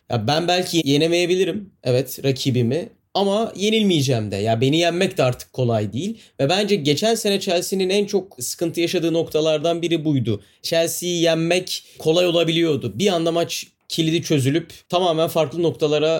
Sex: male